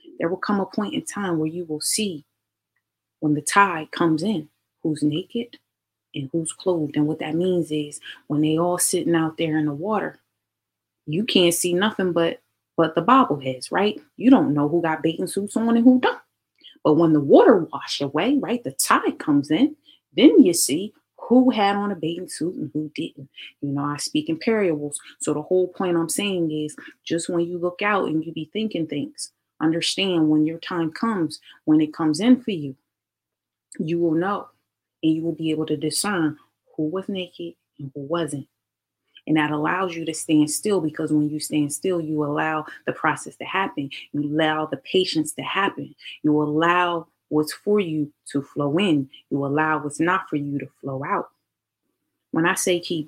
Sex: female